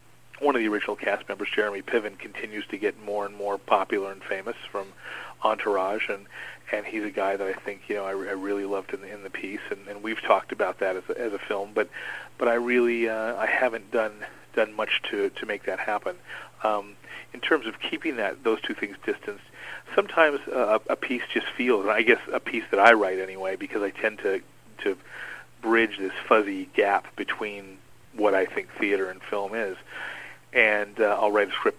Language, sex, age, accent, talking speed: English, male, 40-59, American, 210 wpm